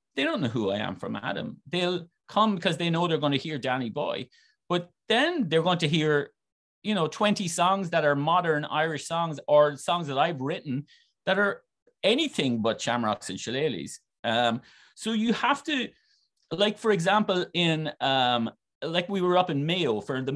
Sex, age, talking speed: male, 30-49, 190 wpm